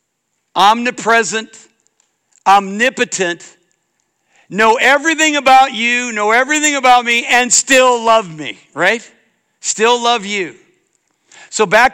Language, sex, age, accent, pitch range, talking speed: English, male, 60-79, American, 165-235 Hz, 100 wpm